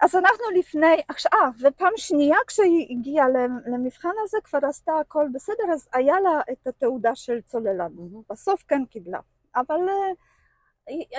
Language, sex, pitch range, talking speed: Hebrew, female, 255-355 Hz, 140 wpm